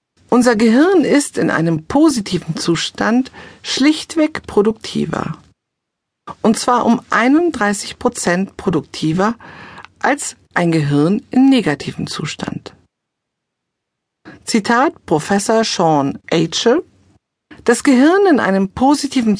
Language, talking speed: German, 90 wpm